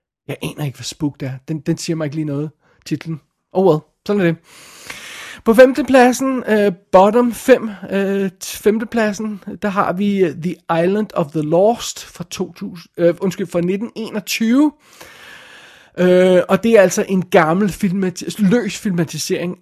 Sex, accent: male, native